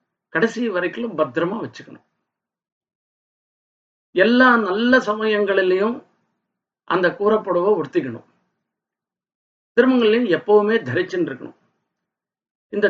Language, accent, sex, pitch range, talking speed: Tamil, native, male, 200-245 Hz, 65 wpm